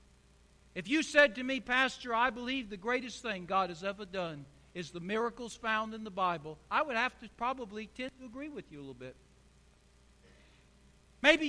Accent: American